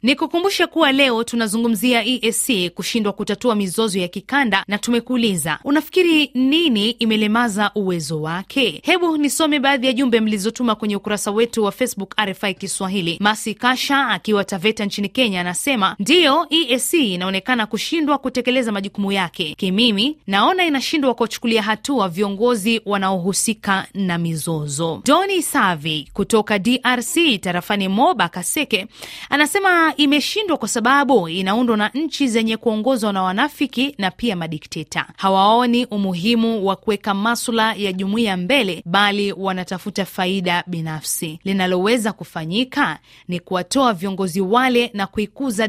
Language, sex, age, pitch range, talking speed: Swahili, female, 20-39, 195-255 Hz, 125 wpm